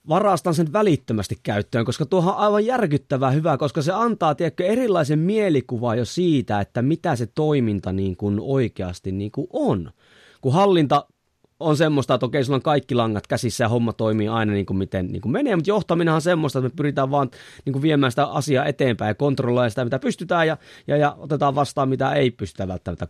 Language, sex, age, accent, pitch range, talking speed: Finnish, male, 30-49, native, 110-150 Hz, 185 wpm